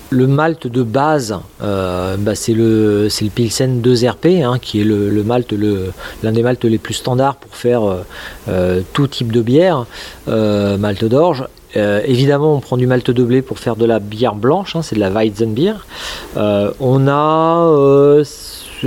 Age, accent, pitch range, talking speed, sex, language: 40-59, French, 110-135 Hz, 170 wpm, male, French